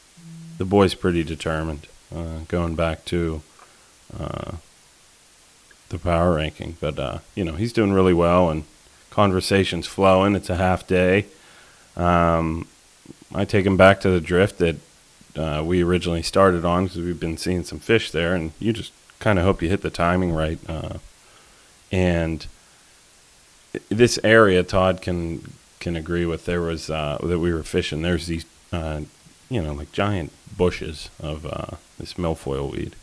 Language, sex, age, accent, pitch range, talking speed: English, male, 30-49, American, 80-95 Hz, 160 wpm